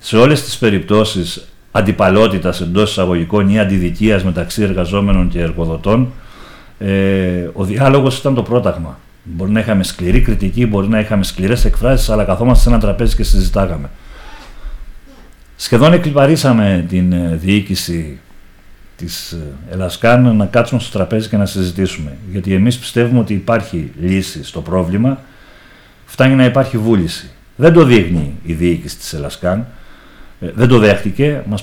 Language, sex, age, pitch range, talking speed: Greek, male, 50-69, 90-120 Hz, 135 wpm